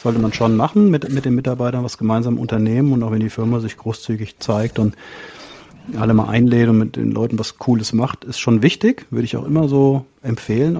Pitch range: 110-140 Hz